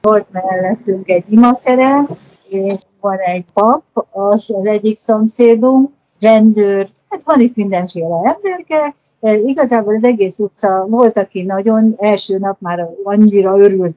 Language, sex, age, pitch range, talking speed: Hungarian, female, 60-79, 195-255 Hz, 135 wpm